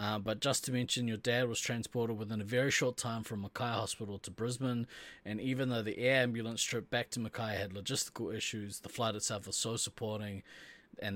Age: 20-39